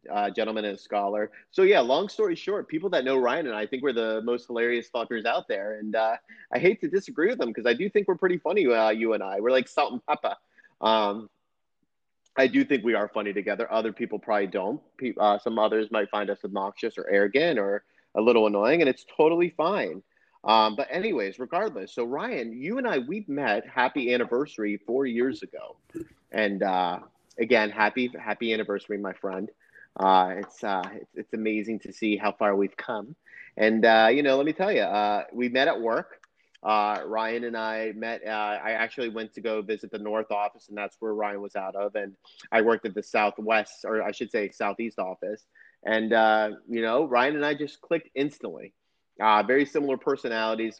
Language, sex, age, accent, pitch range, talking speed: English, male, 30-49, American, 105-120 Hz, 205 wpm